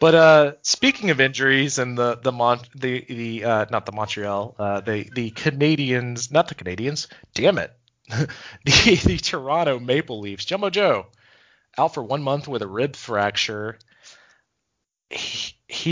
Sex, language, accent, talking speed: male, English, American, 150 wpm